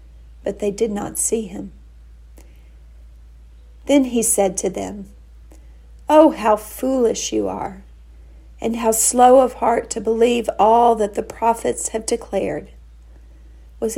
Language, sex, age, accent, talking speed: English, female, 50-69, American, 130 wpm